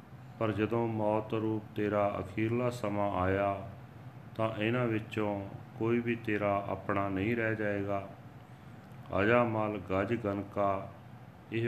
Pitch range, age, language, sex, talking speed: 100-120 Hz, 40-59, Punjabi, male, 120 wpm